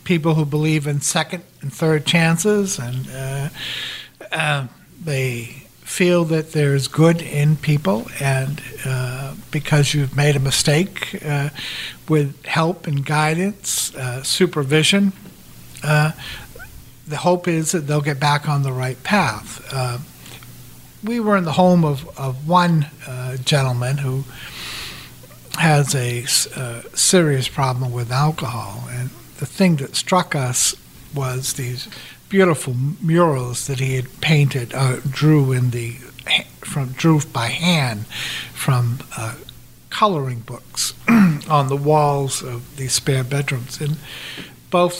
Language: English